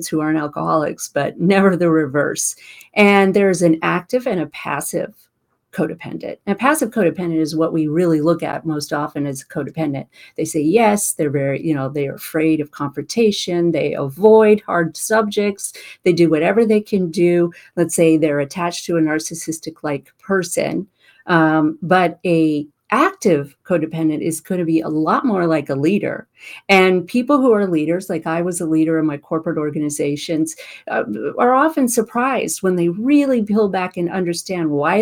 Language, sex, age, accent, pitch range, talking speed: English, female, 40-59, American, 160-215 Hz, 170 wpm